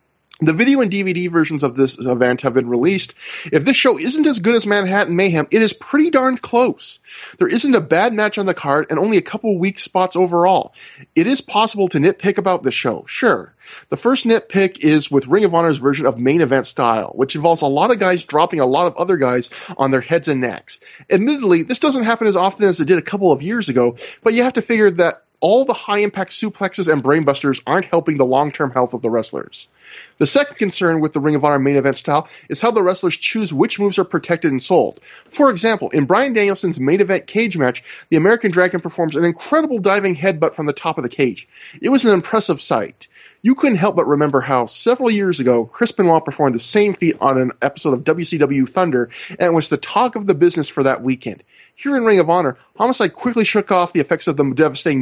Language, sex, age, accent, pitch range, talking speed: English, male, 20-39, American, 140-205 Hz, 225 wpm